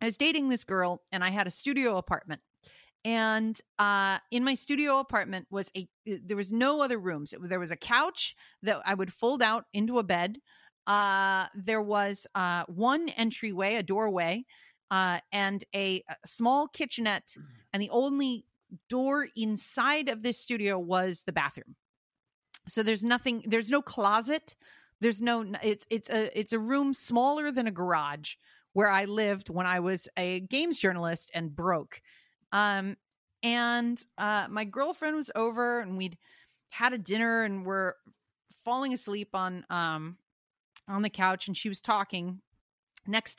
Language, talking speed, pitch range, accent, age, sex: English, 160 wpm, 190-240 Hz, American, 40-59, female